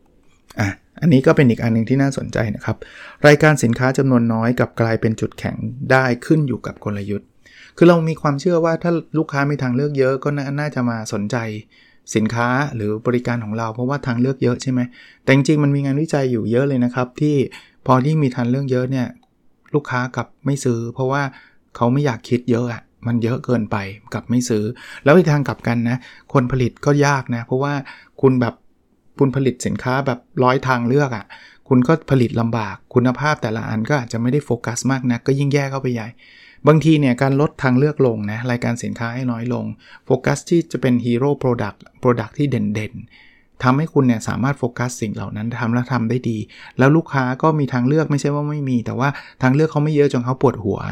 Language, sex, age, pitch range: Thai, male, 20-39, 115-140 Hz